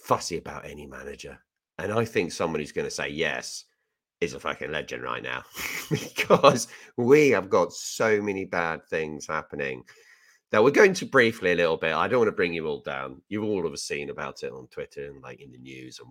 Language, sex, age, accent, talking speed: English, male, 40-59, British, 210 wpm